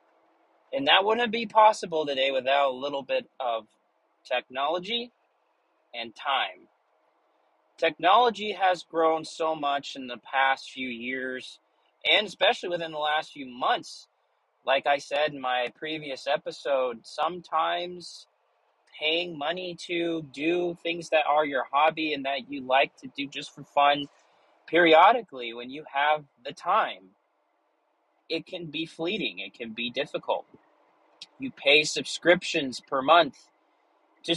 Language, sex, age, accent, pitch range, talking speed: English, male, 30-49, American, 130-175 Hz, 135 wpm